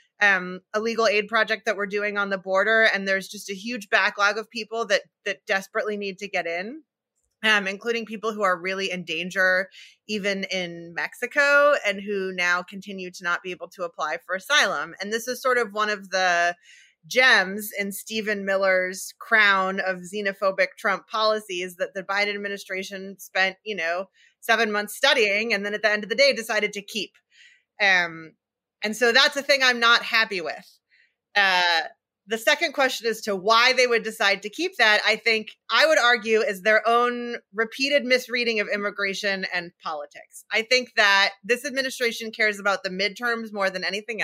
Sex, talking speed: female, 185 wpm